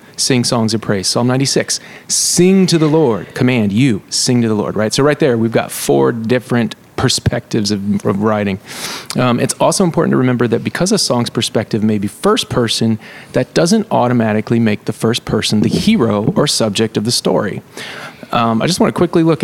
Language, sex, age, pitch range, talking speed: English, male, 30-49, 110-150 Hz, 200 wpm